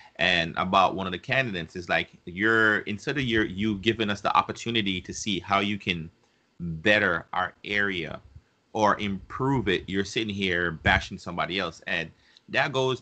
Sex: male